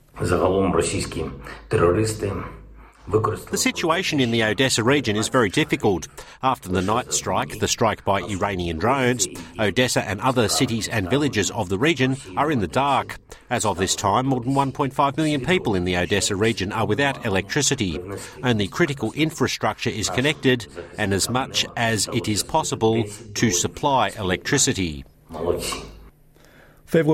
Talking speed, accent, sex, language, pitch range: 140 wpm, Australian, male, Greek, 105-135 Hz